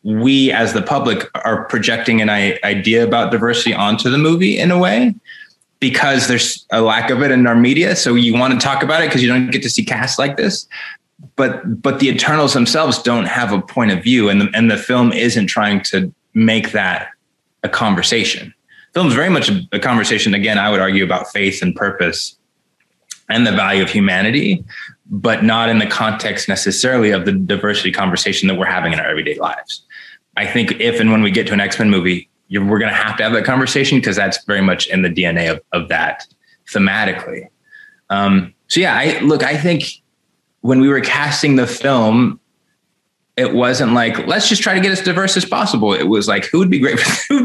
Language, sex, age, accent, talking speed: English, male, 20-39, American, 205 wpm